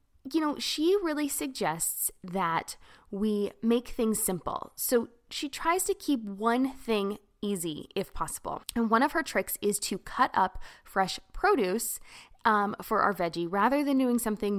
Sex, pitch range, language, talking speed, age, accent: female, 190-275 Hz, English, 160 wpm, 20-39, American